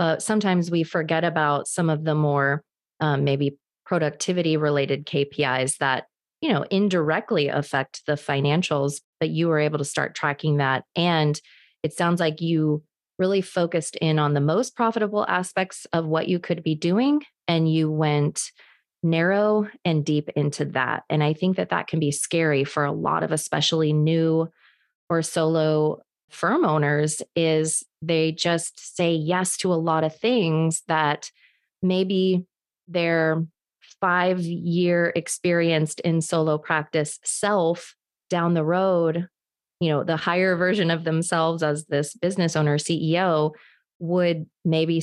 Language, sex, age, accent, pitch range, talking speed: English, female, 20-39, American, 155-175 Hz, 150 wpm